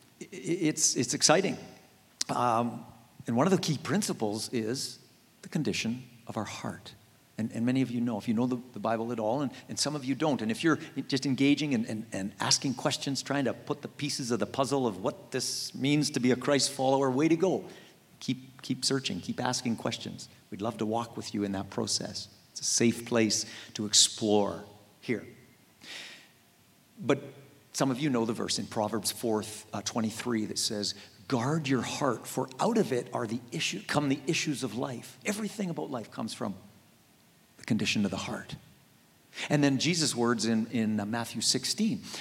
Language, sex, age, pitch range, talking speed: English, male, 50-69, 110-140 Hz, 195 wpm